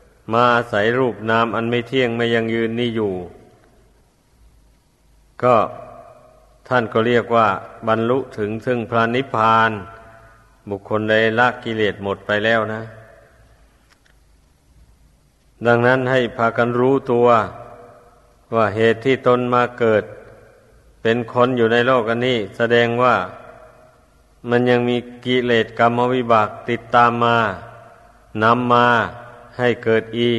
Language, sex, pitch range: Thai, male, 110-120 Hz